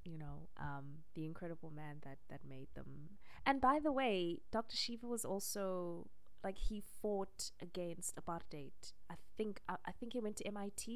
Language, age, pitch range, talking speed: English, 20-39, 155-210 Hz, 175 wpm